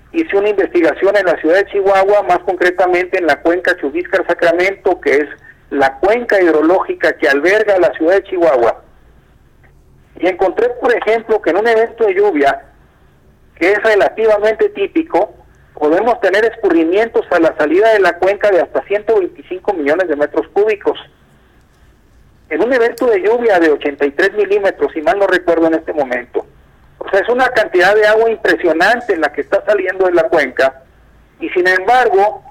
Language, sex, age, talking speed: Spanish, male, 50-69, 165 wpm